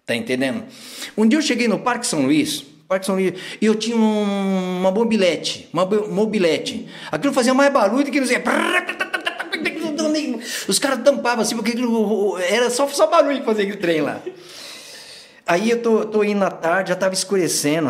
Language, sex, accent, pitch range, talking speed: Portuguese, male, Brazilian, 180-275 Hz, 180 wpm